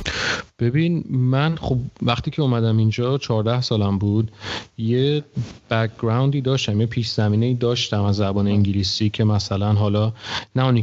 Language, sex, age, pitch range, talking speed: Persian, male, 30-49, 105-120 Hz, 135 wpm